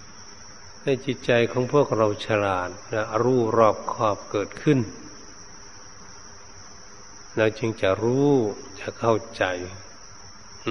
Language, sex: Thai, male